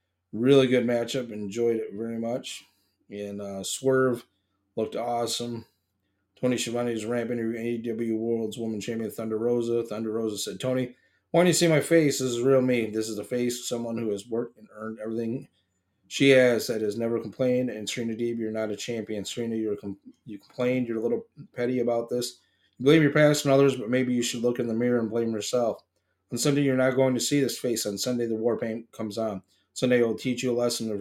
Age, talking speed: 30-49, 220 wpm